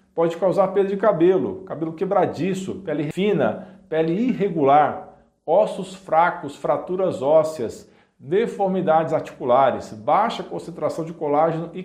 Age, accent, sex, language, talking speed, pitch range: 50-69, Brazilian, male, Portuguese, 110 wpm, 160-195 Hz